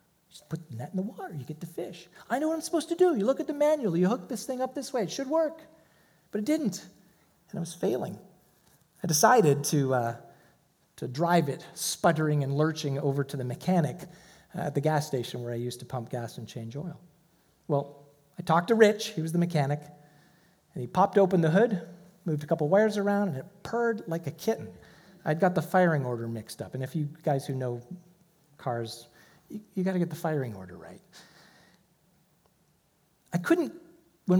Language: English